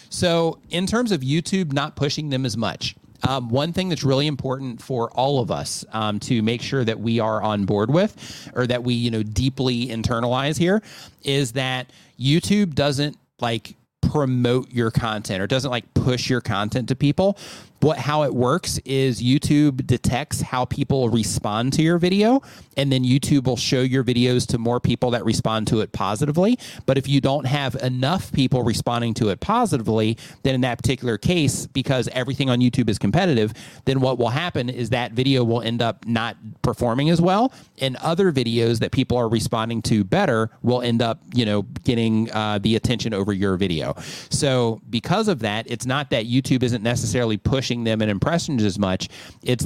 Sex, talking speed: male, 185 wpm